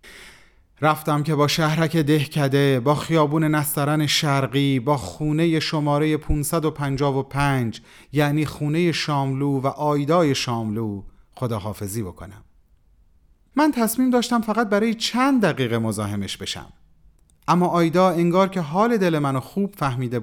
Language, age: Persian, 30-49